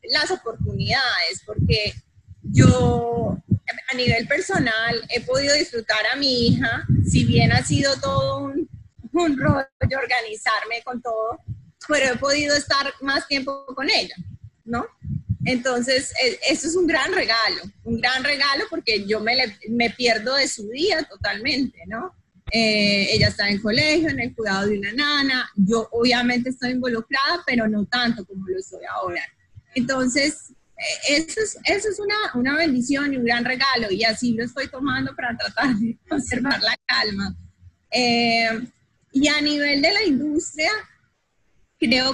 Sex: female